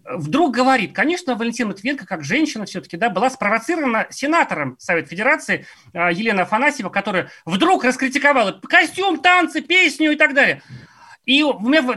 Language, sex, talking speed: Russian, male, 140 wpm